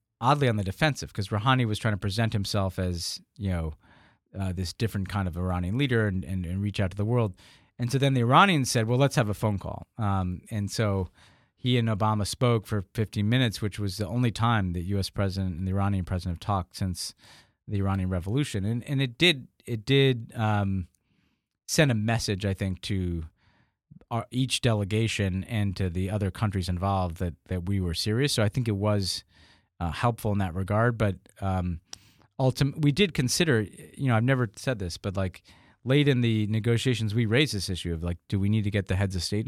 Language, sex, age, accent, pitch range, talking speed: English, male, 40-59, American, 95-115 Hz, 210 wpm